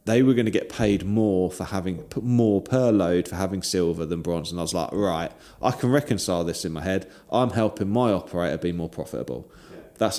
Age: 20-39